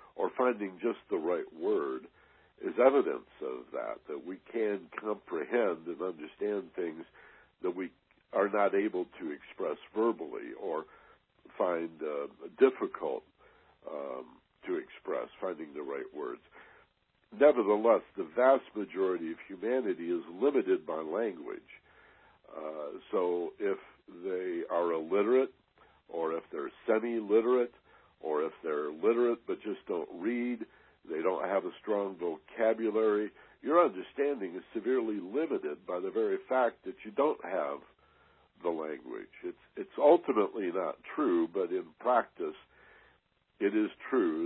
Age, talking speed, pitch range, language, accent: 60-79, 130 wpm, 315-415 Hz, English, American